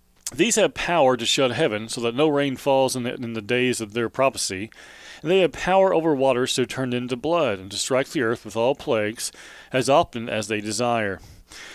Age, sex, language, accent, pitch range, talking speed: 40-59, male, English, American, 110-140 Hz, 215 wpm